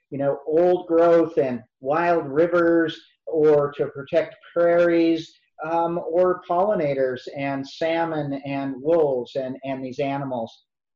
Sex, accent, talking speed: male, American, 120 wpm